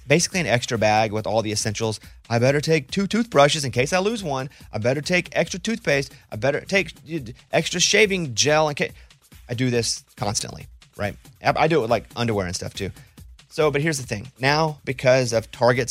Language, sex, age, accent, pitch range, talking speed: English, male, 30-49, American, 115-160 Hz, 205 wpm